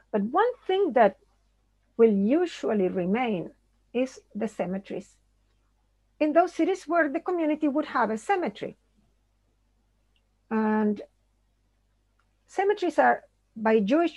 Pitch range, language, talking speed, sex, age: 185-270 Hz, German, 105 wpm, female, 50-69